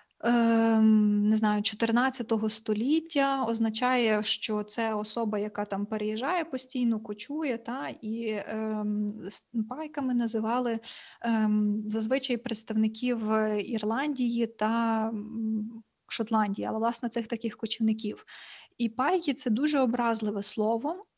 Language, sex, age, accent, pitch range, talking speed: Ukrainian, female, 20-39, native, 215-240 Hz, 100 wpm